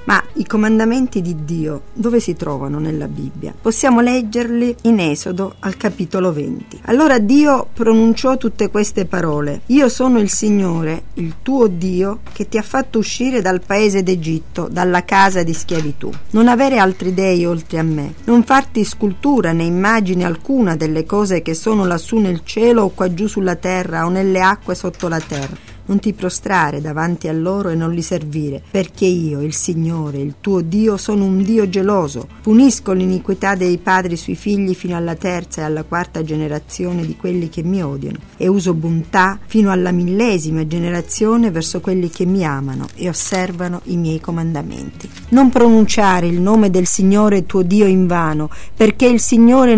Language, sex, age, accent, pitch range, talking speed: Italian, female, 40-59, native, 170-220 Hz, 170 wpm